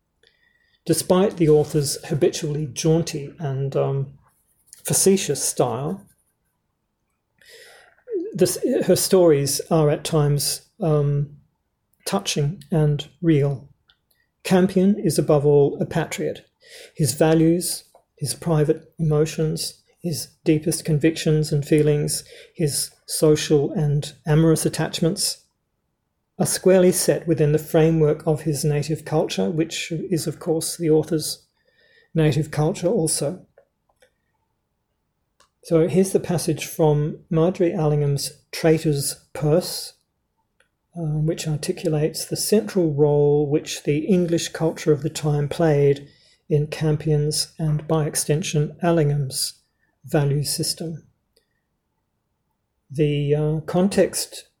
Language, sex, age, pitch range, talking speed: English, male, 40-59, 150-170 Hz, 100 wpm